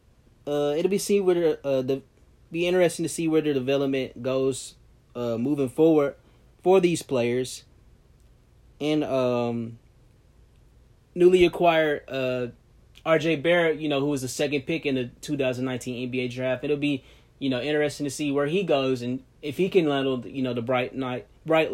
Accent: American